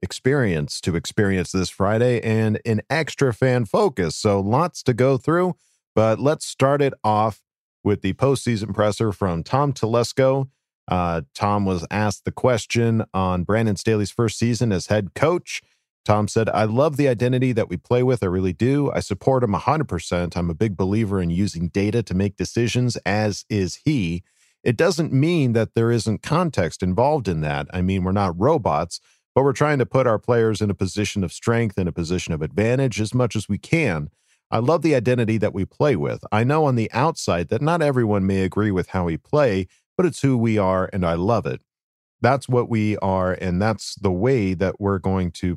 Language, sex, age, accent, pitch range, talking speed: English, male, 40-59, American, 95-120 Hz, 200 wpm